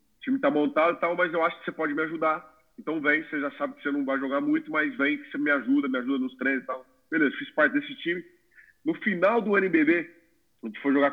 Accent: Brazilian